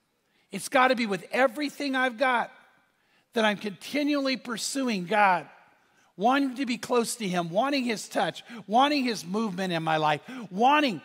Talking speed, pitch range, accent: 155 wpm, 200-270 Hz, American